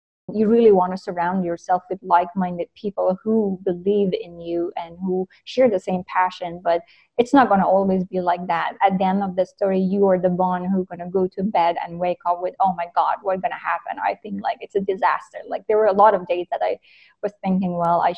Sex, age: female, 20-39